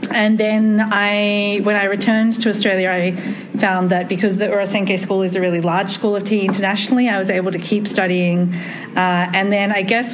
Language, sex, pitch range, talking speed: English, female, 170-200 Hz, 200 wpm